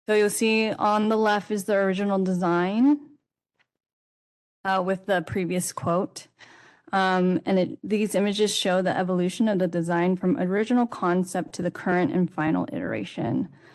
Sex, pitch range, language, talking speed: female, 180-205 Hz, English, 155 wpm